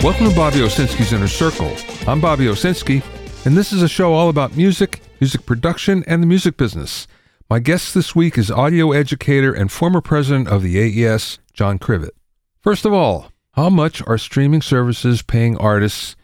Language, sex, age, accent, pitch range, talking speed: English, male, 50-69, American, 105-145 Hz, 175 wpm